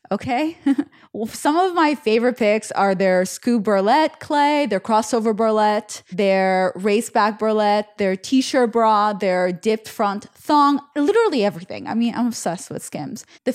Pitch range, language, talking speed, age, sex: 205-270 Hz, English, 155 wpm, 20-39, female